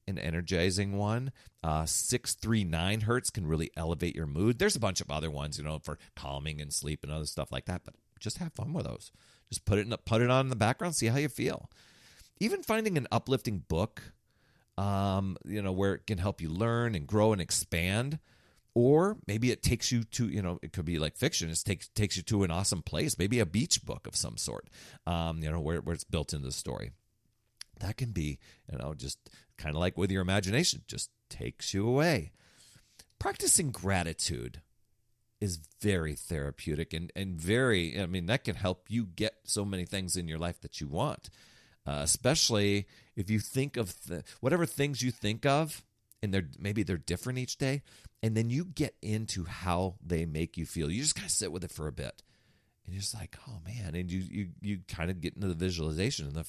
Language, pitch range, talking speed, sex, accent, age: English, 85-115 Hz, 215 wpm, male, American, 40-59